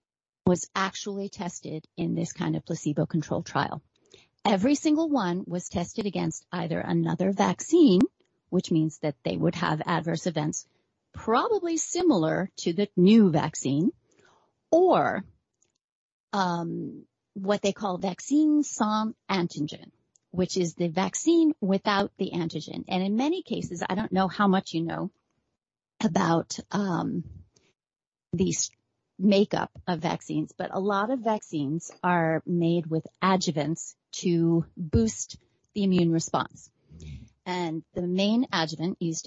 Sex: female